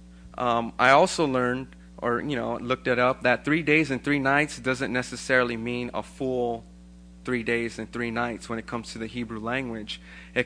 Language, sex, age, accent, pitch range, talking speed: English, male, 20-39, American, 110-130 Hz, 195 wpm